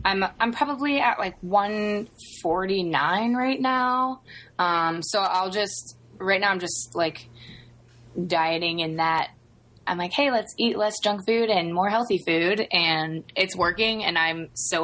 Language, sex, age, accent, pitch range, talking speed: English, female, 20-39, American, 165-200 Hz, 160 wpm